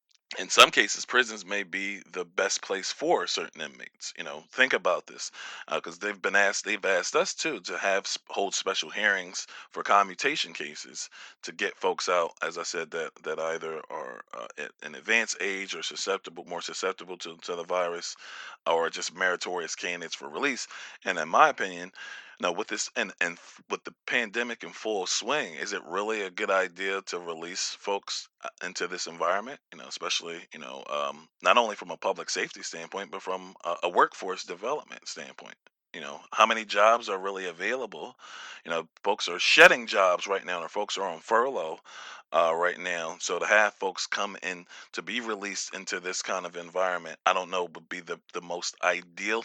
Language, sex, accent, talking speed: English, male, American, 190 wpm